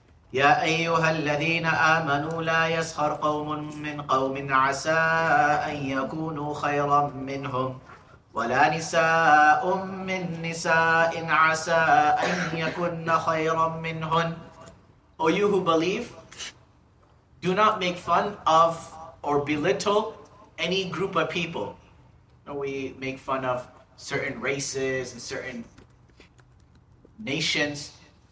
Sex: male